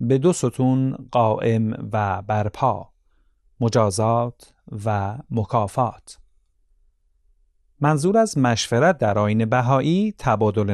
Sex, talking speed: male, 90 wpm